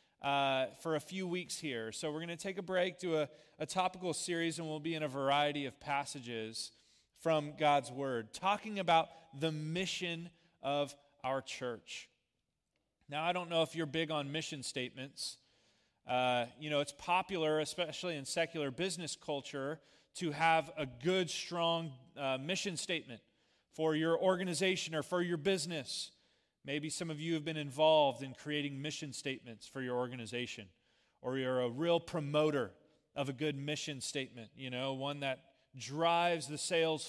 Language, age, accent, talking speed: English, 30-49, American, 165 wpm